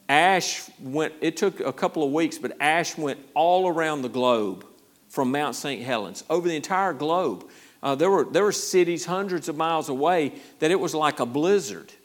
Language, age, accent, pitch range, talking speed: English, 50-69, American, 135-185 Hz, 195 wpm